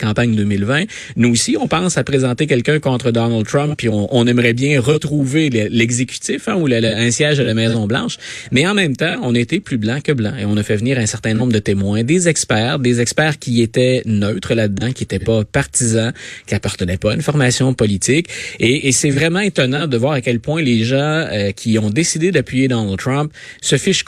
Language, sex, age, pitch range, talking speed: French, male, 30-49, 115-145 Hz, 225 wpm